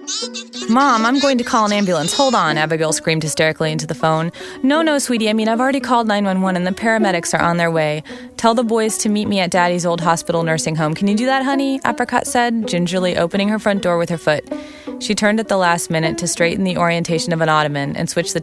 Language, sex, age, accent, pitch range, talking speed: English, female, 20-39, American, 160-220 Hz, 240 wpm